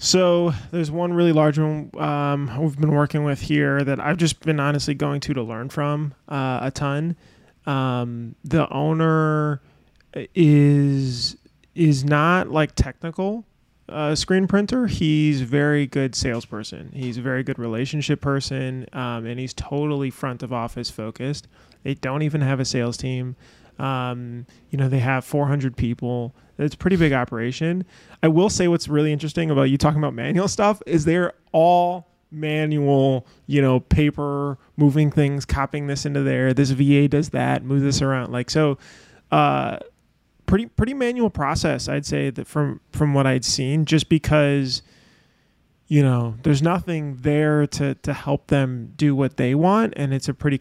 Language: English